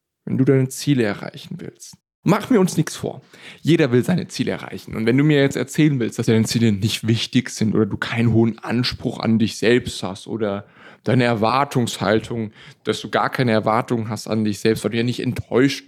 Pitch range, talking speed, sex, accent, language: 110-130 Hz, 210 wpm, male, German, German